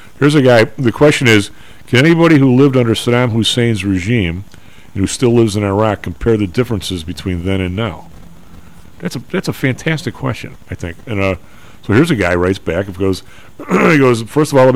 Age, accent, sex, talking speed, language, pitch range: 50-69, American, male, 210 wpm, English, 100-130 Hz